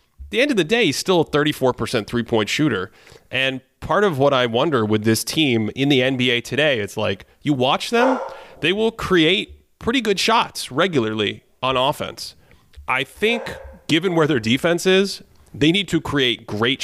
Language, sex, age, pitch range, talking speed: English, male, 30-49, 110-160 Hz, 180 wpm